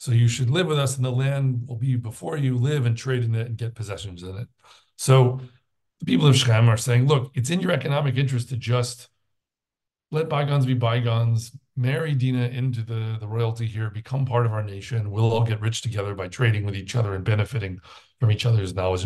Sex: male